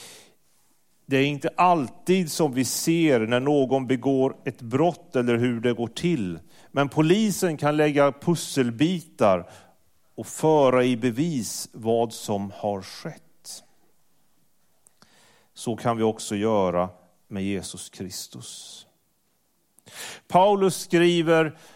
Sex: male